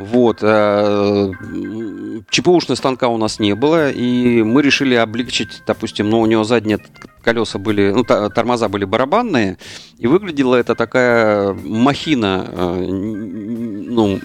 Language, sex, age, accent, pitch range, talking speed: Russian, male, 40-59, native, 100-115 Hz, 120 wpm